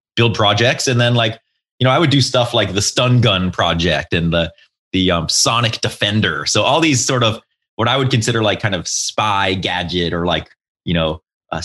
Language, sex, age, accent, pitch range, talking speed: English, male, 30-49, American, 105-130 Hz, 210 wpm